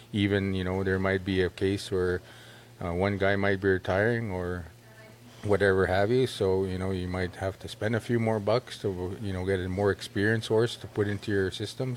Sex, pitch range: male, 95-105 Hz